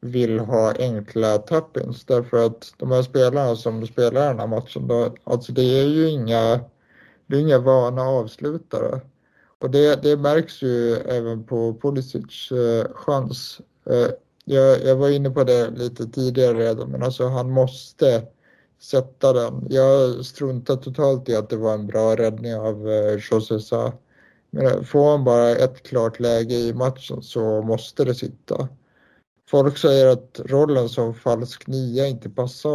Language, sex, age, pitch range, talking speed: Swedish, male, 60-79, 120-135 Hz, 145 wpm